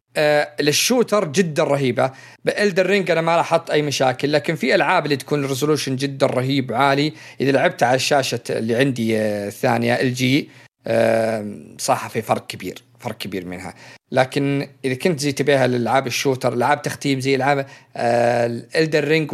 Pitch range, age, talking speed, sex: 120-150 Hz, 50-69, 160 wpm, male